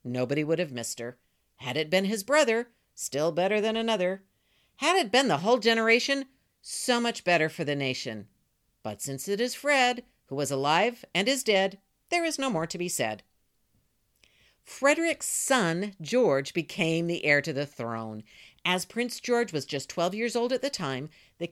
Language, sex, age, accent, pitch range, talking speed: English, female, 50-69, American, 135-230 Hz, 180 wpm